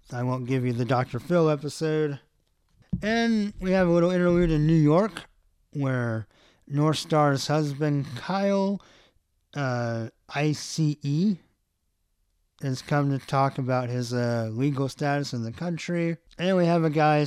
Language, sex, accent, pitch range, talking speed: English, male, American, 130-175 Hz, 145 wpm